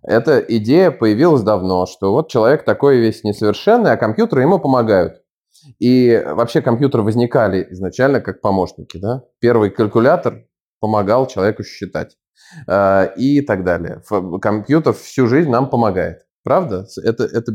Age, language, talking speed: 20-39, Russian, 125 wpm